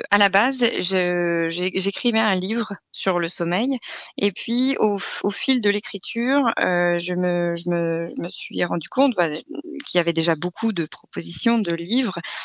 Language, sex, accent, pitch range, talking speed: French, female, French, 175-235 Hz, 180 wpm